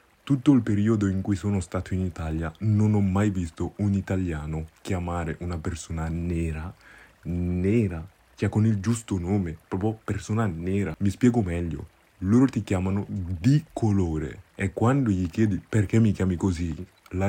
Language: Italian